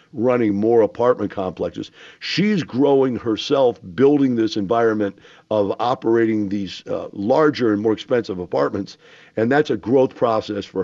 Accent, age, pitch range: American, 50-69, 110-150 Hz